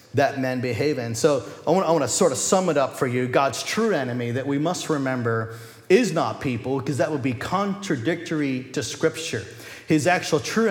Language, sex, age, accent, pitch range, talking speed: English, male, 40-59, American, 125-160 Hz, 195 wpm